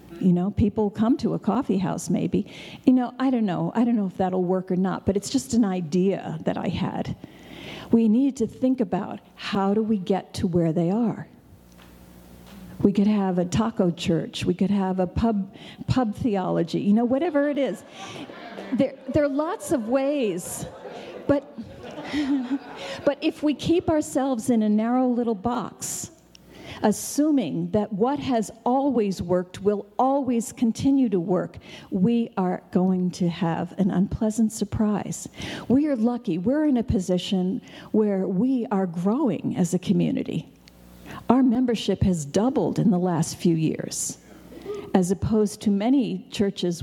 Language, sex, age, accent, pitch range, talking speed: English, female, 50-69, American, 185-250 Hz, 160 wpm